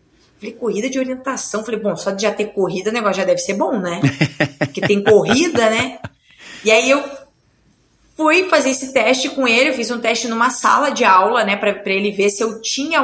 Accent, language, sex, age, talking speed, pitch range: Brazilian, Portuguese, female, 20-39, 215 wpm, 195-240 Hz